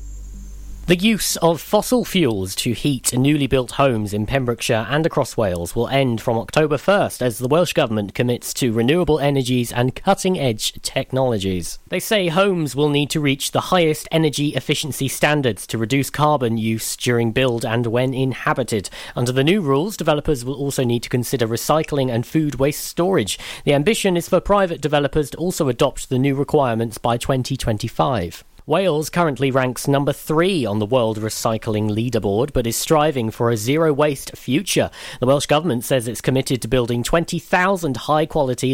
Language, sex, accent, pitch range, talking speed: English, male, British, 120-155 Hz, 165 wpm